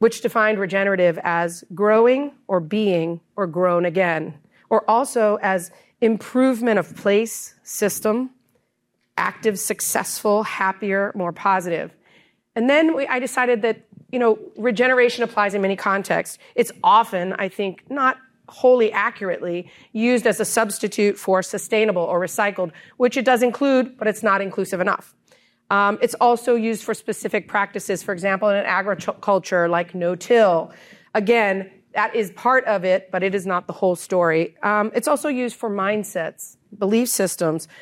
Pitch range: 180-225 Hz